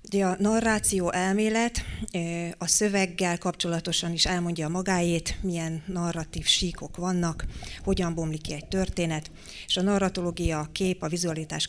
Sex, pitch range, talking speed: female, 160-185 Hz, 140 wpm